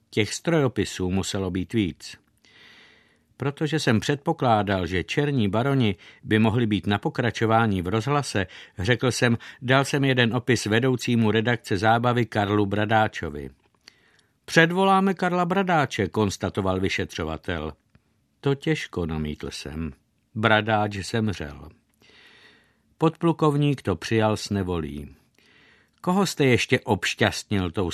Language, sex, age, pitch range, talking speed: Czech, male, 60-79, 95-125 Hz, 105 wpm